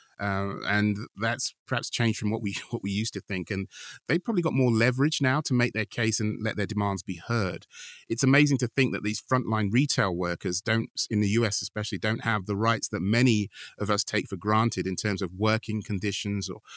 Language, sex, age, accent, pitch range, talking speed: English, male, 30-49, British, 100-115 Hz, 215 wpm